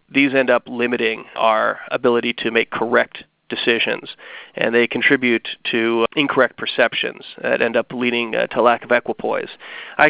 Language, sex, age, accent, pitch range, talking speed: English, male, 40-59, American, 120-135 Hz, 155 wpm